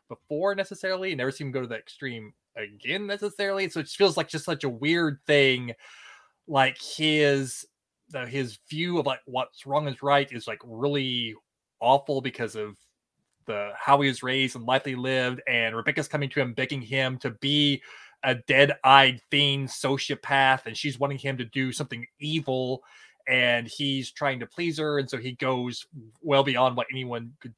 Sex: male